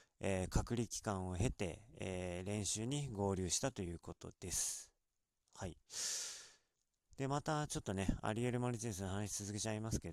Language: Japanese